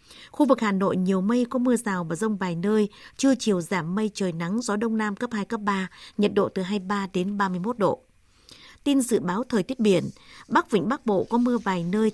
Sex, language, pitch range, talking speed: female, Vietnamese, 190-235 Hz, 230 wpm